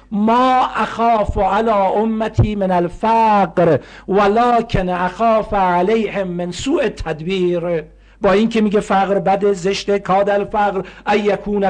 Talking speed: 115 wpm